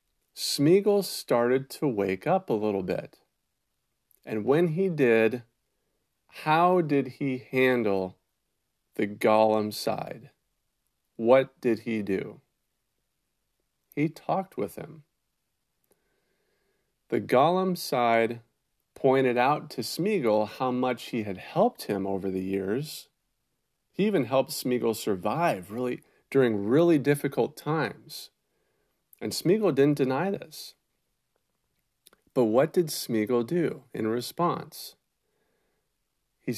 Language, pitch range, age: English, 110-150 Hz, 40-59